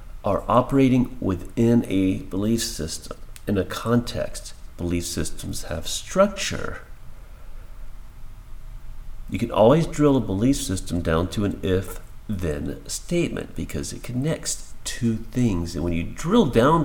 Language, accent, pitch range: English, American, 90-120 Hz